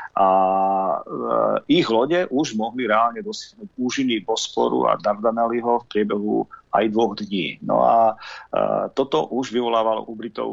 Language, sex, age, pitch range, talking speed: Slovak, male, 40-59, 110-130 Hz, 135 wpm